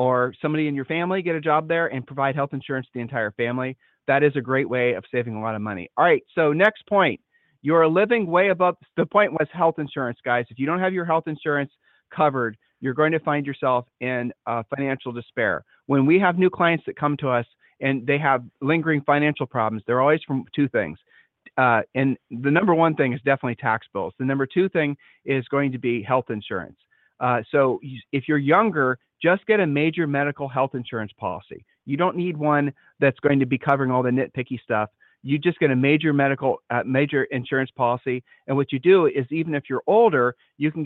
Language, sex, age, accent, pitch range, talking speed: English, male, 40-59, American, 125-155 Hz, 215 wpm